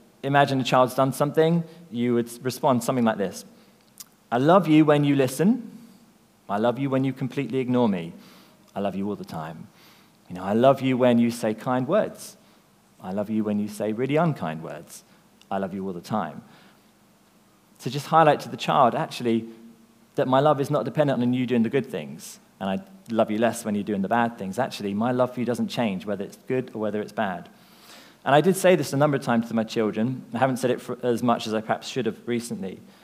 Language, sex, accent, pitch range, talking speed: English, male, British, 115-150 Hz, 225 wpm